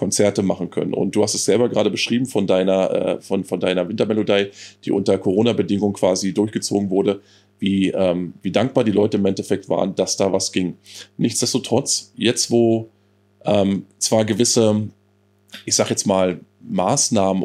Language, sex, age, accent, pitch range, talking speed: German, male, 20-39, German, 100-110 Hz, 155 wpm